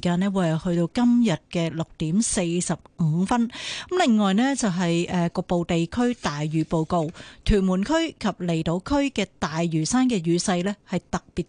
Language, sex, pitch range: Chinese, female, 170-235 Hz